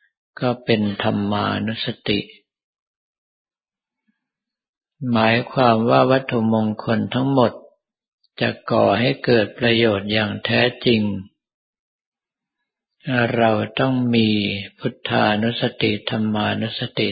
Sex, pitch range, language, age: male, 105-125 Hz, Thai, 50-69